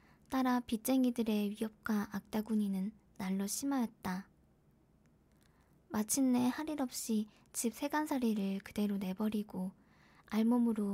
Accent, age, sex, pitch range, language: native, 10-29, male, 200-235 Hz, Korean